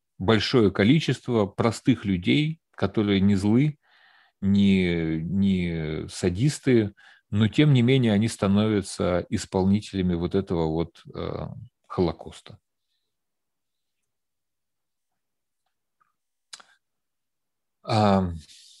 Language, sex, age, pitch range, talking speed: Russian, male, 40-59, 95-110 Hz, 75 wpm